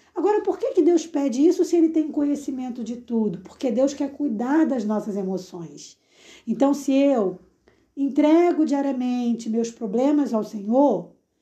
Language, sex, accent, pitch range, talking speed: Portuguese, female, Brazilian, 230-310 Hz, 150 wpm